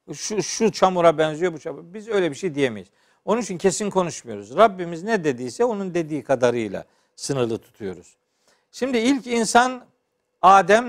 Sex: male